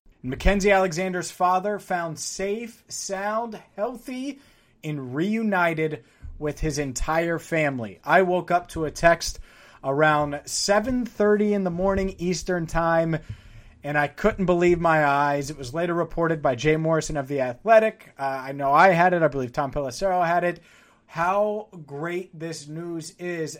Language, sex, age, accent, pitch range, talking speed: English, male, 30-49, American, 145-180 Hz, 150 wpm